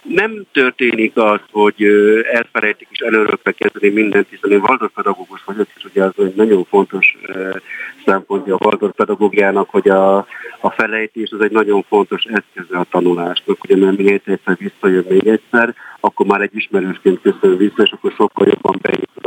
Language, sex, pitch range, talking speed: Hungarian, male, 100-120 Hz, 155 wpm